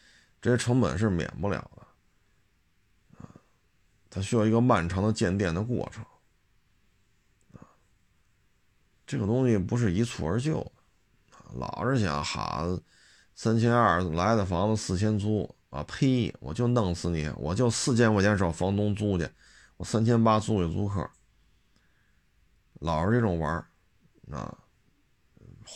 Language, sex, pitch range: Chinese, male, 90-115 Hz